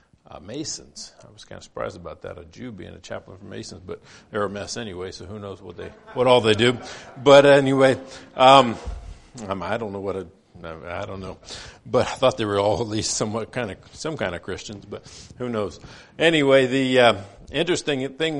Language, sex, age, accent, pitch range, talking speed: English, male, 50-69, American, 100-125 Hz, 210 wpm